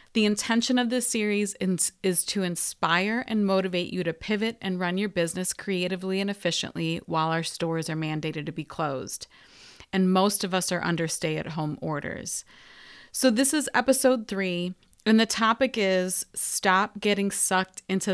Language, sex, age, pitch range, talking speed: English, female, 30-49, 175-210 Hz, 160 wpm